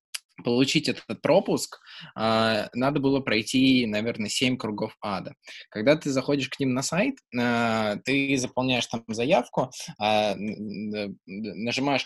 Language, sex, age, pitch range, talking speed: Russian, male, 20-39, 115-160 Hz, 110 wpm